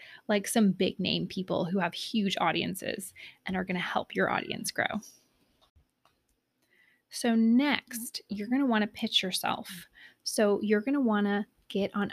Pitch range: 195-250 Hz